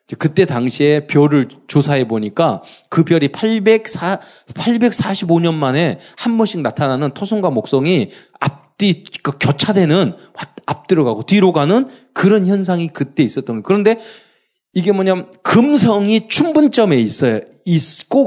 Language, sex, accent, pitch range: Korean, male, native, 140-215 Hz